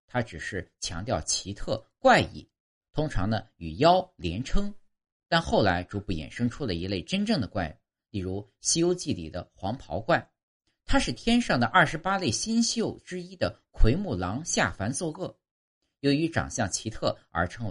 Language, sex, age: Chinese, male, 50-69